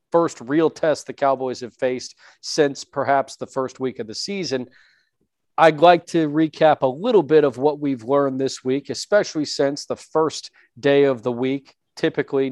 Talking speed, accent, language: 175 wpm, American, English